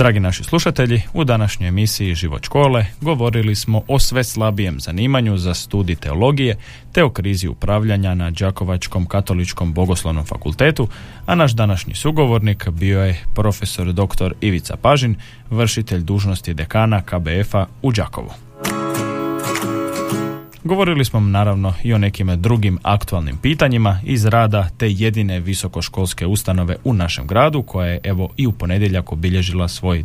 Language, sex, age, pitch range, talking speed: Croatian, male, 30-49, 90-115 Hz, 135 wpm